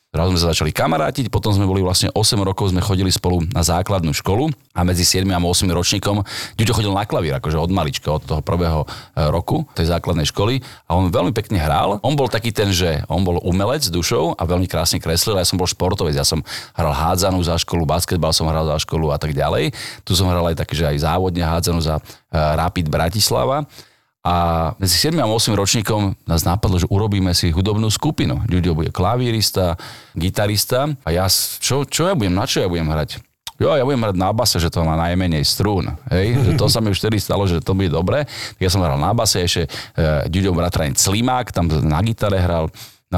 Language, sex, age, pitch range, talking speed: Slovak, male, 40-59, 85-110 Hz, 205 wpm